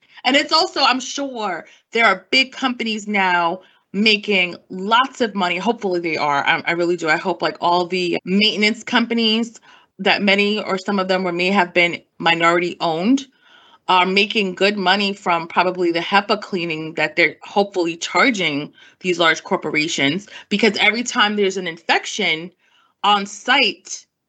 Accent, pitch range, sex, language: American, 175-225 Hz, female, English